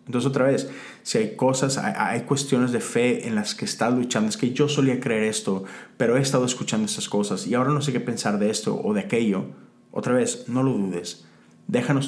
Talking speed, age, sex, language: 220 wpm, 30-49, male, Spanish